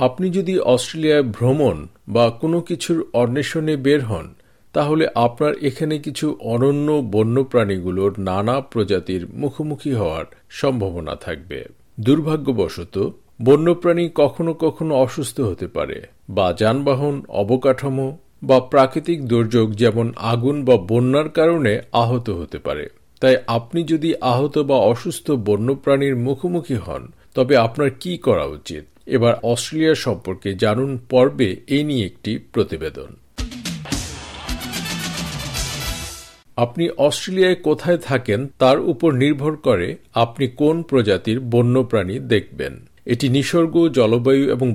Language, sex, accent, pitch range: Bengali, male, native, 120-150 Hz